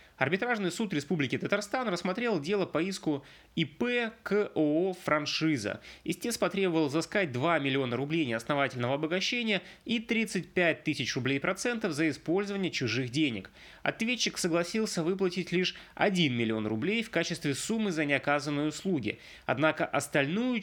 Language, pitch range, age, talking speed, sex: Russian, 140-200 Hz, 20-39, 125 wpm, male